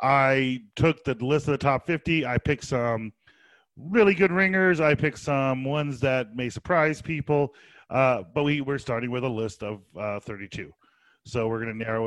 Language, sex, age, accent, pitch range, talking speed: English, male, 40-59, American, 115-150 Hz, 185 wpm